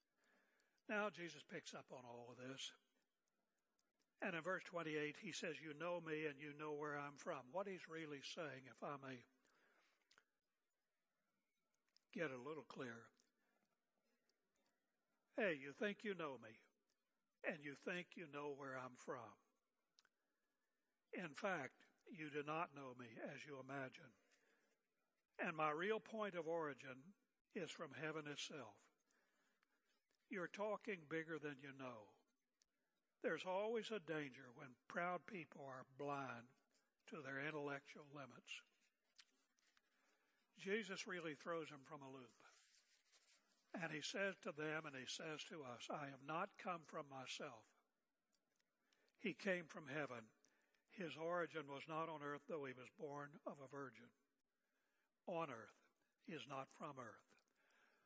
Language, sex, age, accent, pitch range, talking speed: English, male, 60-79, American, 135-180 Hz, 140 wpm